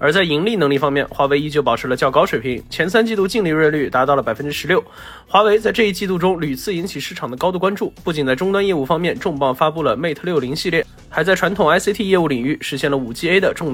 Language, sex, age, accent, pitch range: Chinese, male, 20-39, native, 140-185 Hz